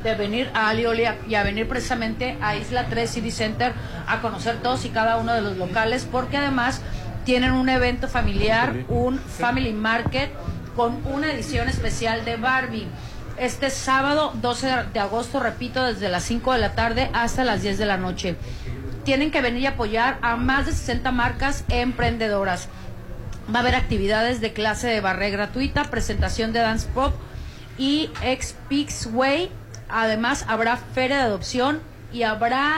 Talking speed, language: 165 wpm, Spanish